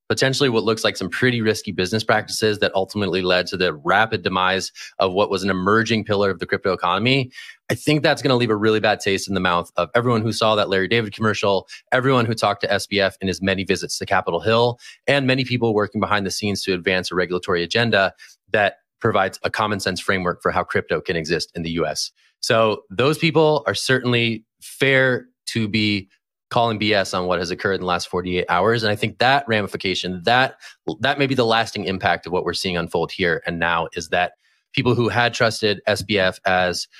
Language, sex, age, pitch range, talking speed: English, male, 30-49, 95-120 Hz, 215 wpm